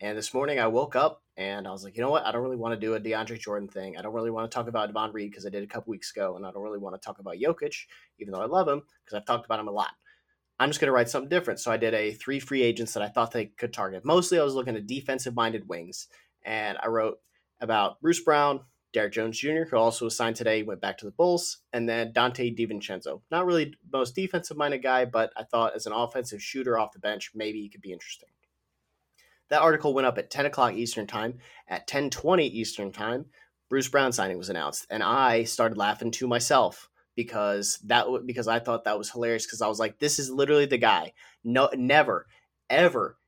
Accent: American